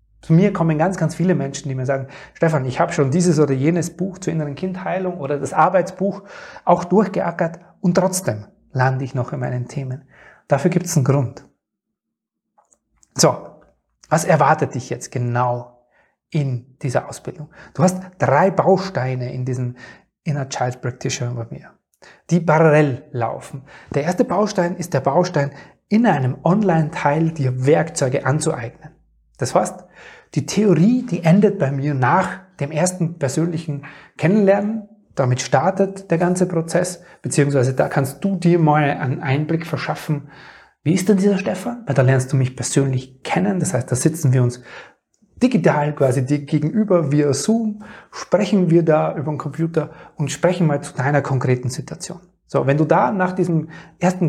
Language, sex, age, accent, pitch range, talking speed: German, male, 30-49, German, 135-180 Hz, 160 wpm